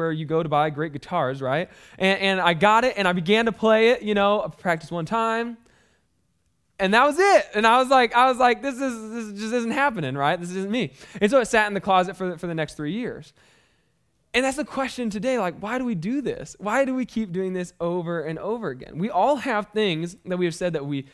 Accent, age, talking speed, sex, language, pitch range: American, 20-39, 255 wpm, male, English, 150-205 Hz